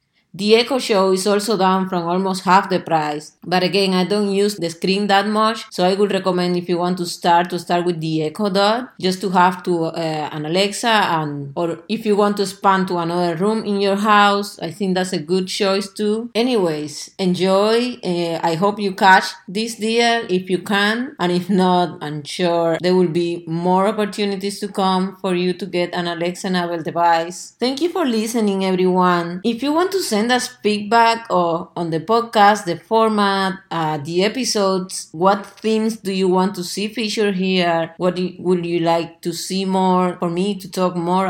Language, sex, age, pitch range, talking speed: English, female, 30-49, 175-205 Hz, 200 wpm